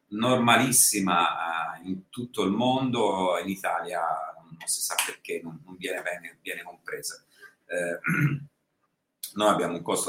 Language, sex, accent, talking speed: Italian, male, native, 125 wpm